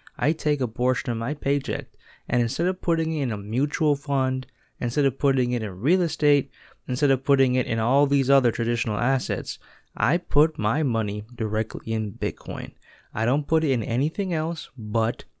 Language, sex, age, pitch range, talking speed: English, male, 20-39, 115-140 Hz, 185 wpm